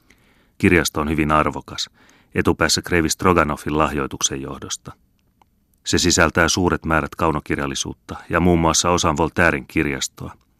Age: 30-49